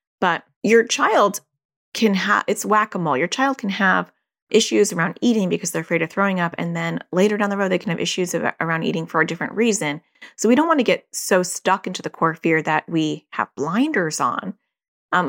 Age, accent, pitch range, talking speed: 30-49, American, 160-205 Hz, 210 wpm